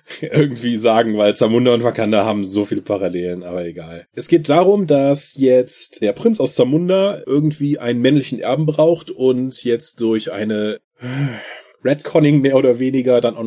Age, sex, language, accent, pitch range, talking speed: 30-49, male, German, German, 110-140 Hz, 165 wpm